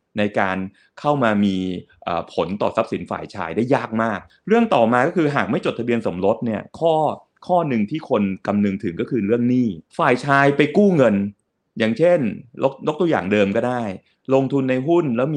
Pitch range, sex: 105-150 Hz, male